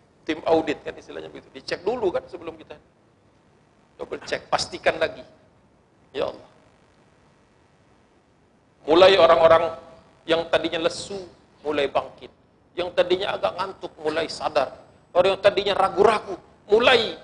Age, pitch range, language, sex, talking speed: 50-69, 170-265 Hz, Indonesian, male, 120 wpm